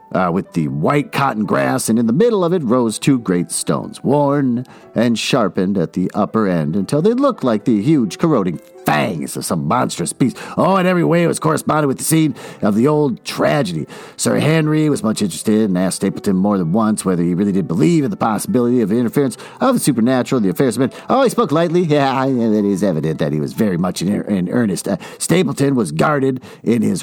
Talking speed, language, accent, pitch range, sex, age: 220 wpm, English, American, 120-195 Hz, male, 50-69